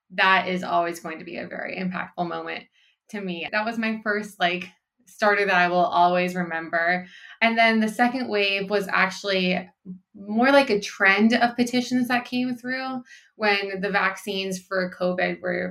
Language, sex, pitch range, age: English, female, 180-205 Hz, 20-39